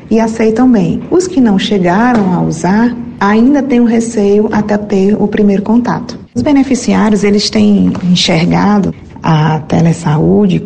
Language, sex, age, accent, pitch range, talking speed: Portuguese, female, 40-59, Brazilian, 180-215 Hz, 140 wpm